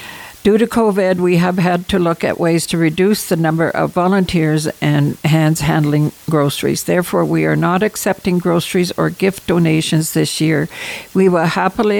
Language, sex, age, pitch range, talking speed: English, female, 60-79, 165-195 Hz, 165 wpm